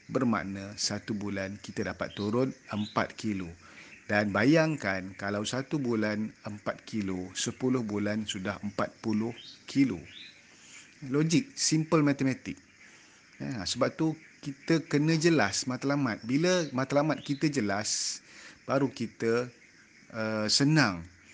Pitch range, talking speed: 110-140 Hz, 110 wpm